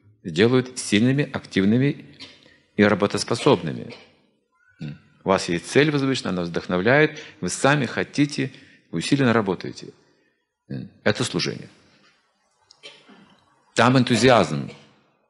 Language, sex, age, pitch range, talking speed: Russian, male, 50-69, 90-135 Hz, 85 wpm